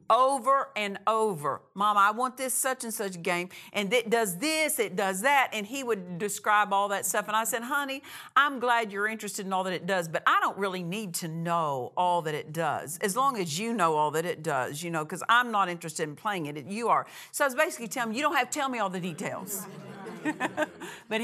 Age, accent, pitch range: 50-69, American, 185-240 Hz